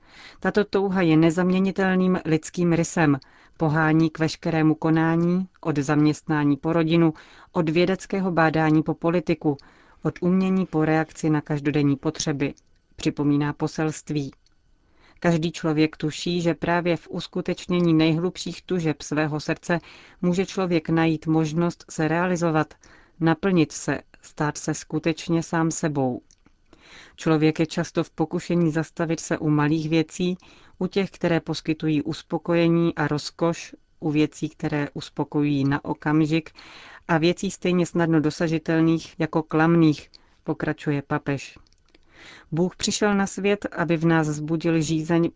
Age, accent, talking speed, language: 30-49, native, 125 wpm, Czech